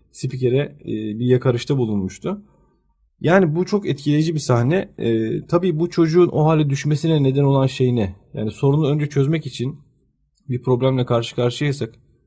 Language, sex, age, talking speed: Turkish, male, 40-59, 150 wpm